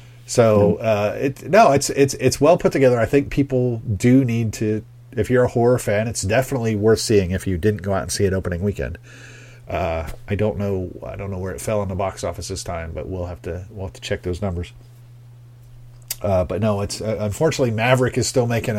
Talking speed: 225 wpm